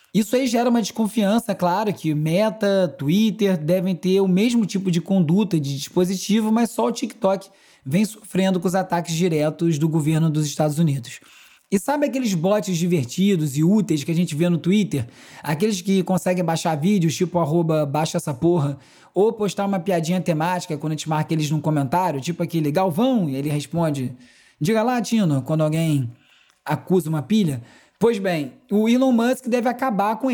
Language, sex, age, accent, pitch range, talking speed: Portuguese, male, 20-39, Brazilian, 165-210 Hz, 175 wpm